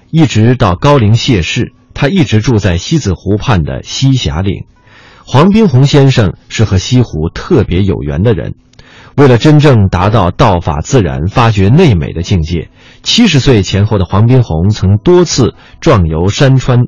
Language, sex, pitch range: Chinese, male, 95-135 Hz